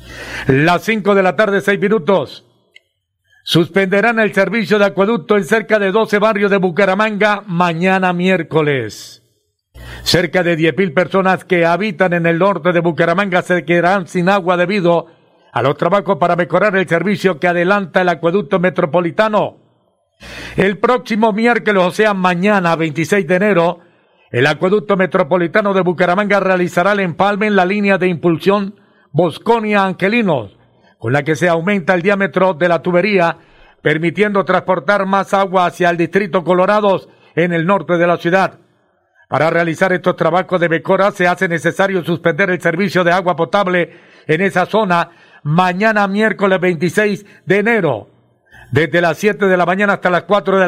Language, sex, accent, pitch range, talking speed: Spanish, male, Mexican, 170-200 Hz, 155 wpm